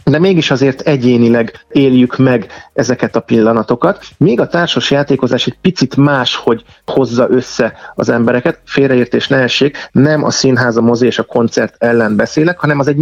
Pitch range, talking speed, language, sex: 120-145 Hz, 165 wpm, Hungarian, male